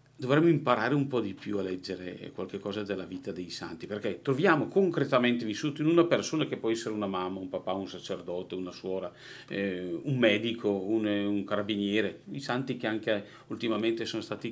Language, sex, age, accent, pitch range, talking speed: Italian, male, 40-59, native, 105-135 Hz, 185 wpm